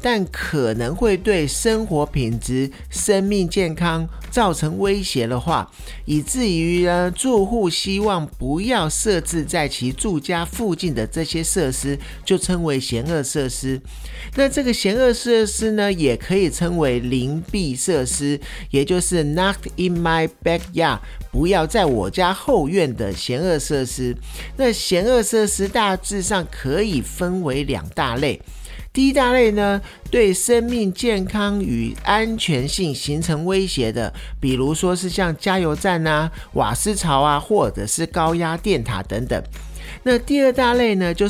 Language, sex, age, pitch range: Chinese, male, 50-69, 140-200 Hz